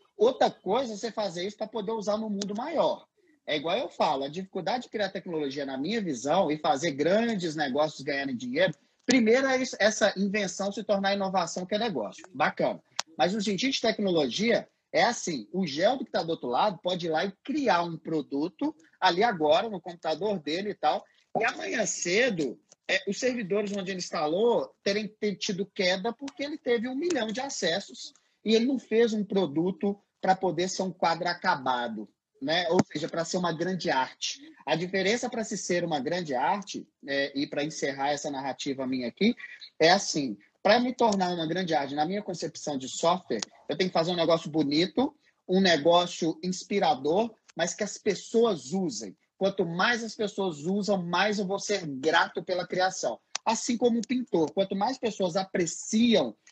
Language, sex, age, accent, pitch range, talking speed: Portuguese, male, 30-49, Brazilian, 170-225 Hz, 185 wpm